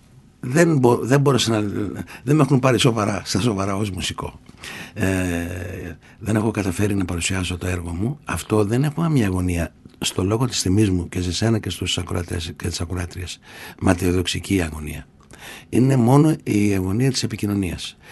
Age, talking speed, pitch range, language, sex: 60-79, 155 wpm, 90-120 Hz, Greek, male